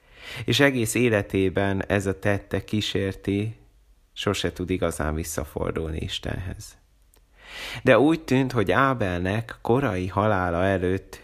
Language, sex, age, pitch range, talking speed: Hungarian, male, 30-49, 85-105 Hz, 105 wpm